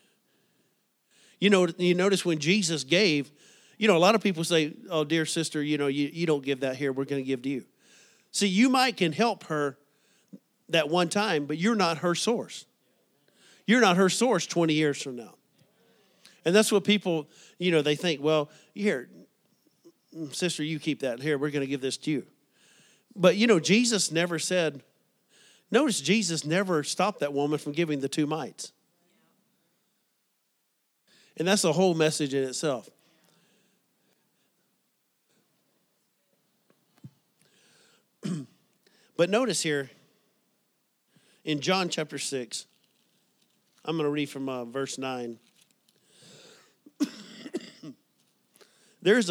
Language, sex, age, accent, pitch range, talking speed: English, male, 50-69, American, 150-205 Hz, 140 wpm